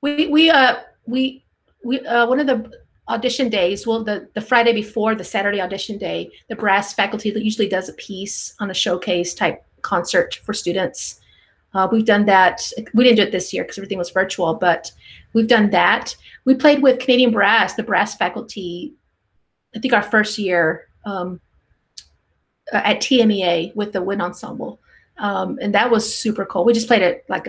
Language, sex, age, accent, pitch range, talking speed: English, female, 30-49, American, 190-235 Hz, 180 wpm